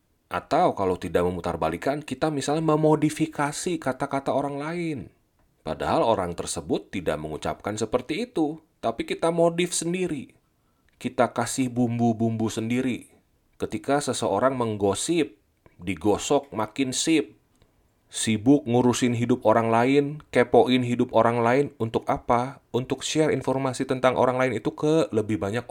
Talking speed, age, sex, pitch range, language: 120 wpm, 30-49, male, 110-145 Hz, Indonesian